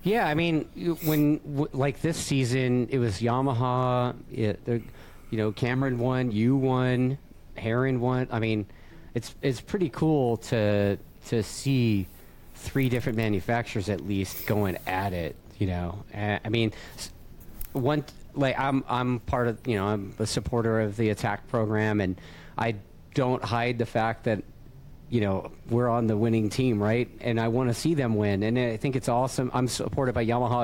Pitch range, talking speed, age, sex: 105-135 Hz, 170 wpm, 40-59, male